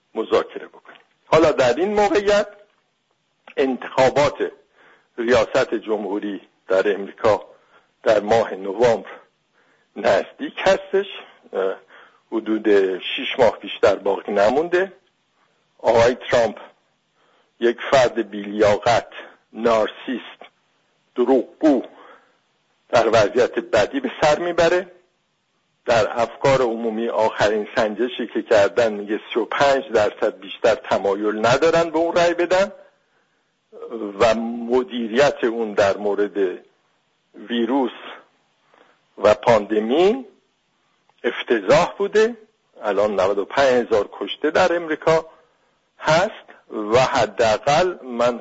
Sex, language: male, English